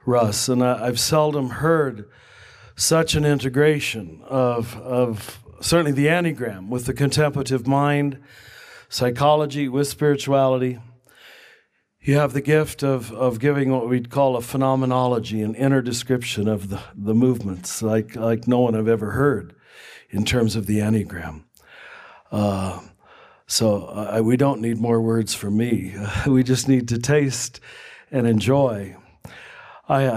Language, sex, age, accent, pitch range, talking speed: English, male, 50-69, American, 115-140 Hz, 140 wpm